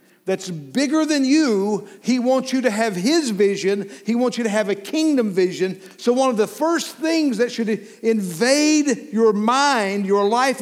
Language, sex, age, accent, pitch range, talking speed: English, male, 50-69, American, 205-275 Hz, 180 wpm